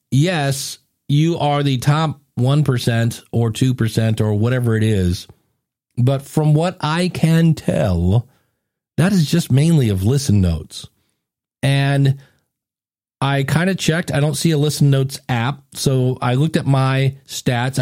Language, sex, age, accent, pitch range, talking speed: English, male, 40-59, American, 125-165 Hz, 145 wpm